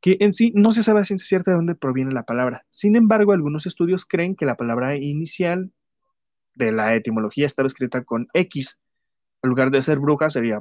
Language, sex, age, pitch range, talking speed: Spanish, male, 20-39, 115-155 Hz, 205 wpm